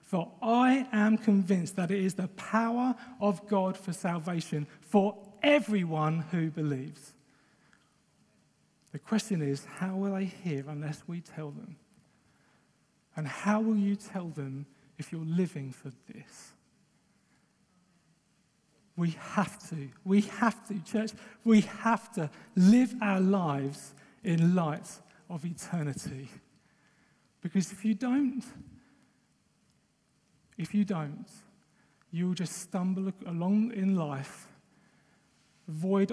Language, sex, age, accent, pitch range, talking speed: English, male, 40-59, British, 160-205 Hz, 115 wpm